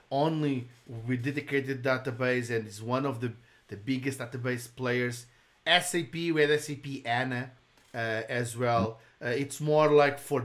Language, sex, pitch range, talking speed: English, male, 125-150 Hz, 140 wpm